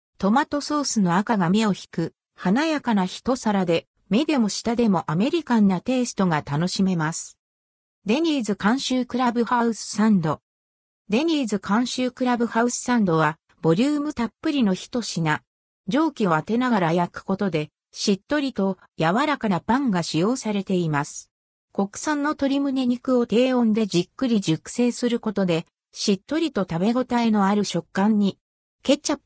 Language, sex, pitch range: Japanese, female, 175-255 Hz